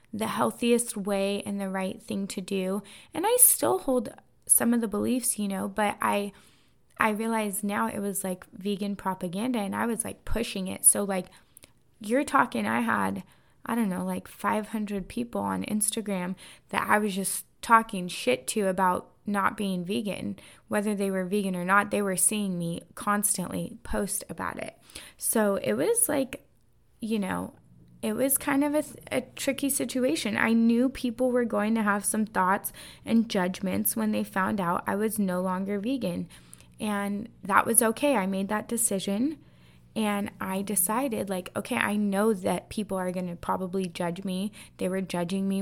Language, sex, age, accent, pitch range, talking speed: English, female, 20-39, American, 185-225 Hz, 180 wpm